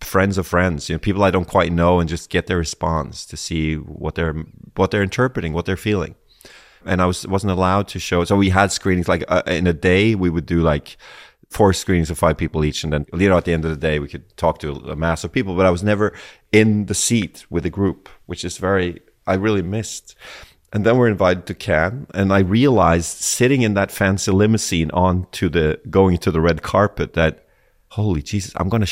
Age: 30-49